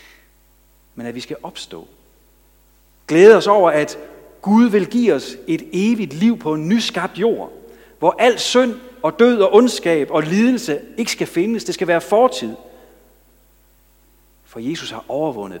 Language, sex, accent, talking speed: Danish, male, native, 155 wpm